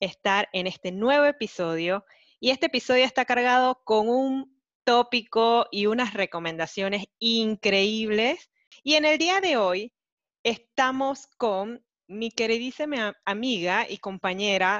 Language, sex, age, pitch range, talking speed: Spanish, female, 20-39, 195-250 Hz, 120 wpm